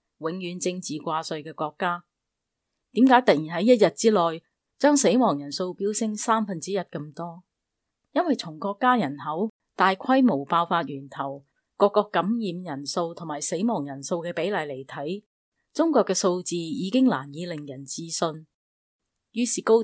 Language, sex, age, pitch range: Chinese, female, 20-39, 160-220 Hz